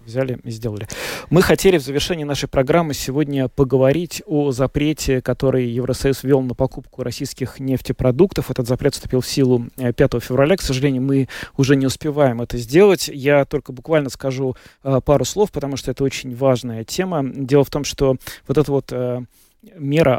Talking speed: 170 wpm